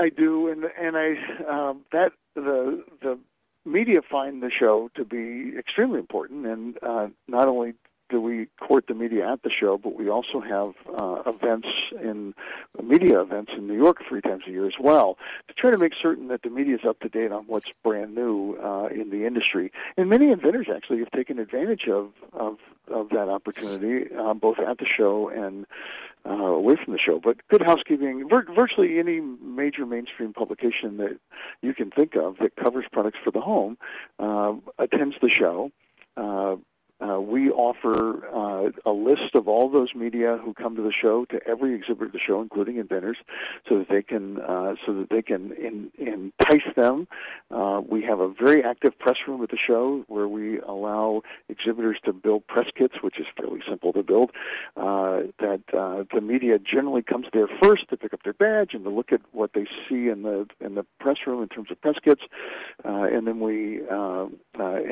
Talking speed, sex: 195 wpm, male